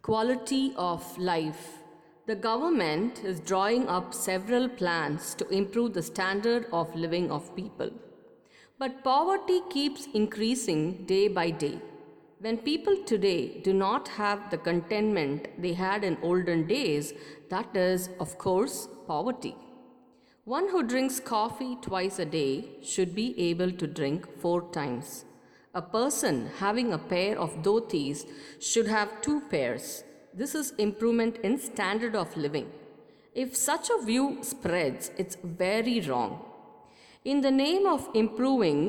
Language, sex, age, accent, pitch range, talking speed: English, female, 50-69, Indian, 170-255 Hz, 135 wpm